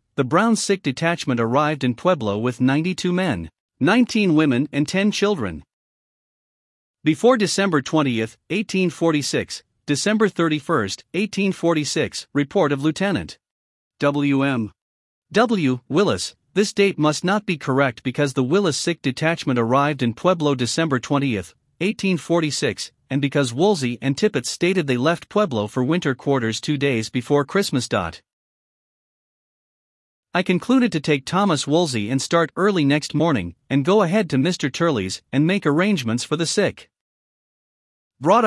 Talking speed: 135 wpm